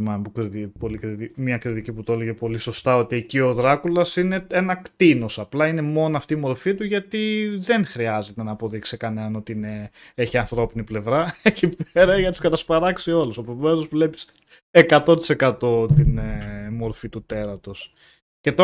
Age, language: 20-39, Greek